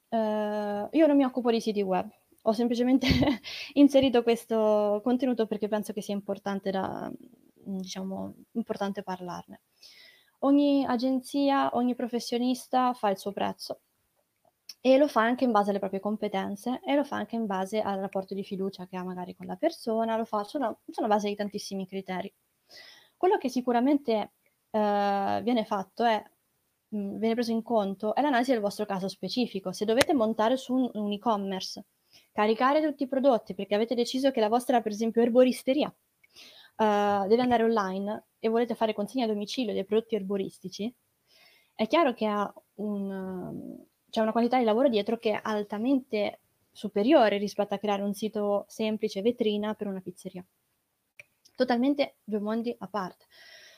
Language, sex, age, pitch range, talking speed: Italian, female, 20-39, 205-250 Hz, 160 wpm